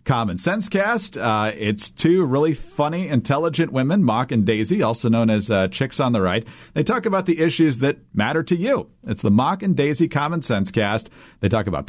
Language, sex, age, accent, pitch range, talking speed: English, male, 40-59, American, 110-155 Hz, 205 wpm